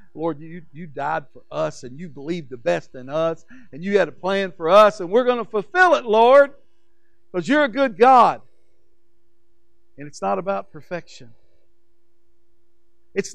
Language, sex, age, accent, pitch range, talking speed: English, male, 60-79, American, 145-205 Hz, 170 wpm